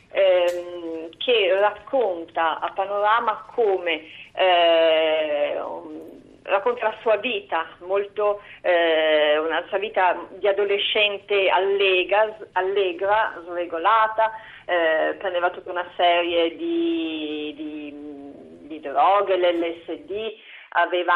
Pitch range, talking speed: 170-210 Hz, 85 wpm